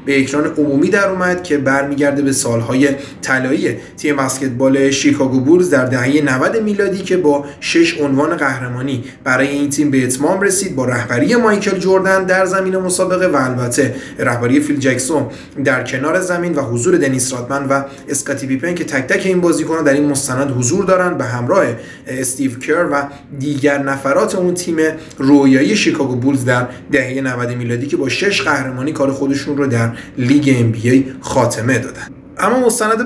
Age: 30-49